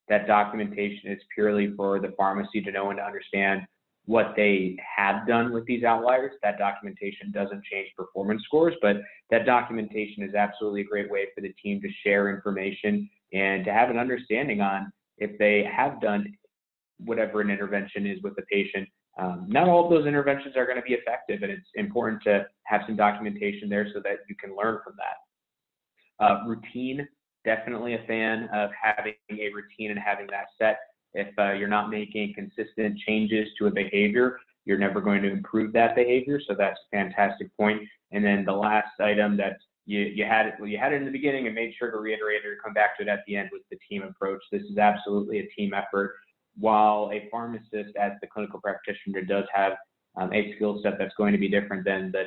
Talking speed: 200 wpm